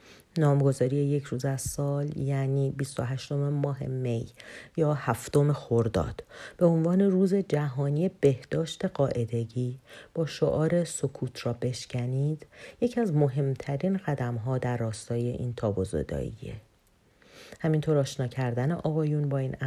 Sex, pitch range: female, 130-165 Hz